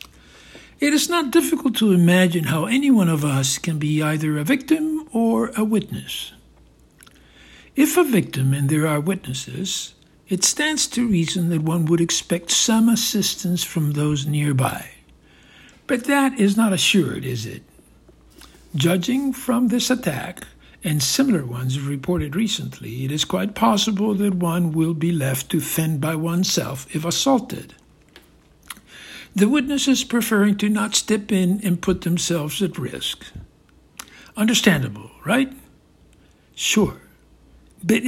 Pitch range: 150-230 Hz